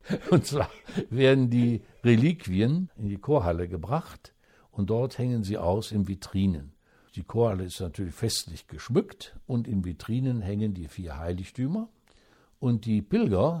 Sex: male